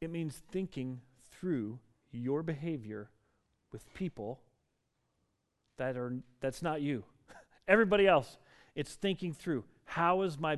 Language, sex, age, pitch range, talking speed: English, male, 40-59, 125-165 Hz, 120 wpm